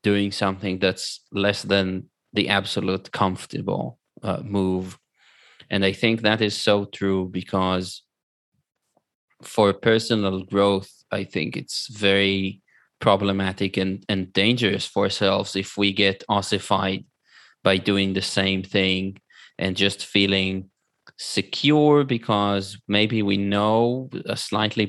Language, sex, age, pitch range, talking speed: English, male, 20-39, 95-105 Hz, 120 wpm